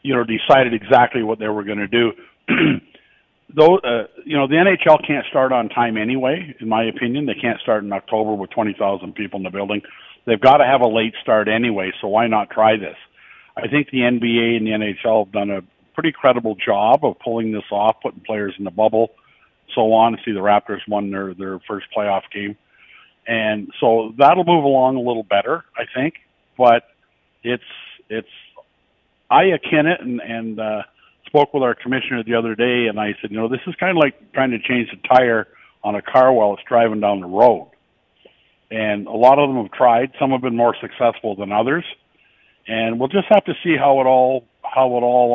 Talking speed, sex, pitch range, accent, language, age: 210 wpm, male, 105-130 Hz, American, English, 50-69